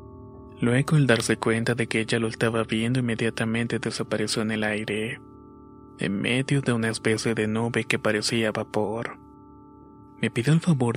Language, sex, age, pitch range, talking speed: Spanish, male, 20-39, 110-120 Hz, 160 wpm